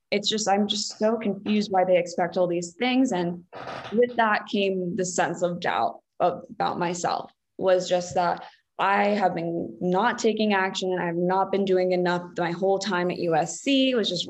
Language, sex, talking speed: English, female, 190 wpm